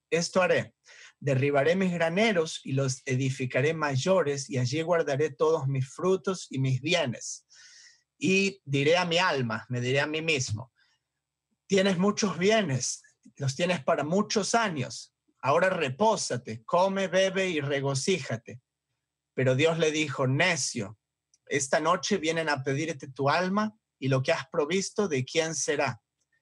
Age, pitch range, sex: 40-59, 135-185 Hz, male